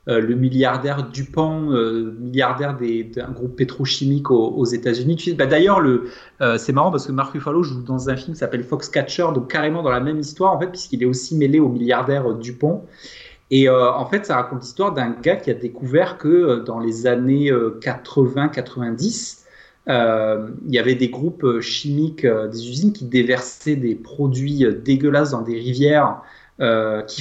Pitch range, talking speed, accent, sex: 125-160 Hz, 190 wpm, French, male